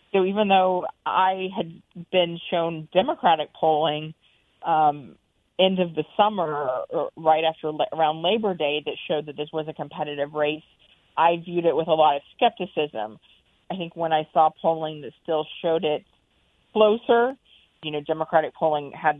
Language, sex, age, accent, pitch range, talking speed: English, female, 40-59, American, 150-175 Hz, 160 wpm